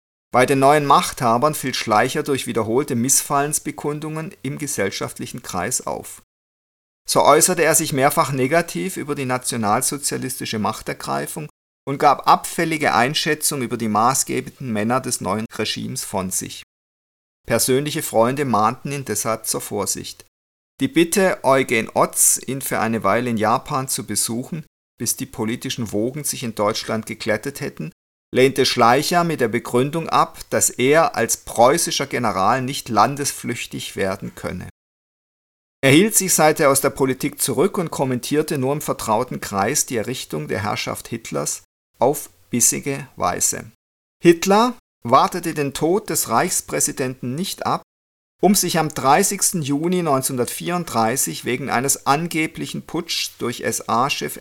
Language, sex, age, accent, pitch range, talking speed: German, male, 50-69, German, 115-155 Hz, 135 wpm